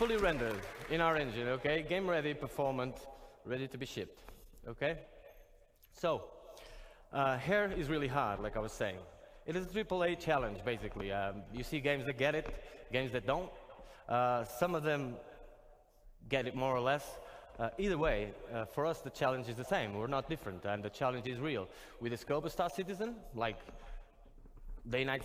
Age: 20-39